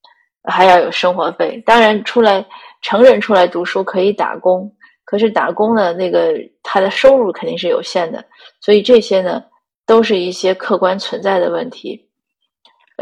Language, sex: Chinese, female